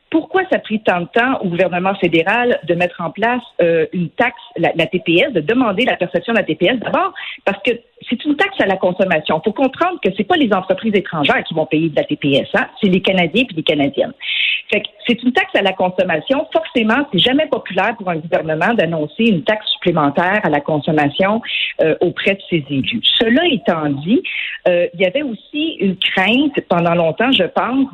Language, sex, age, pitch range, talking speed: French, female, 50-69, 175-240 Hz, 215 wpm